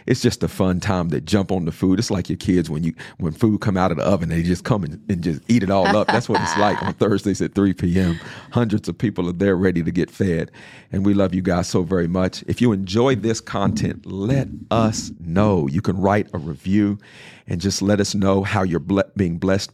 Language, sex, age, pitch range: English, male, 50-69, 90-105 Hz